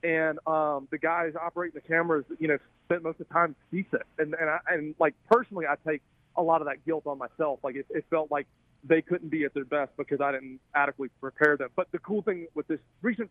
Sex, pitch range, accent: male, 140-175 Hz, American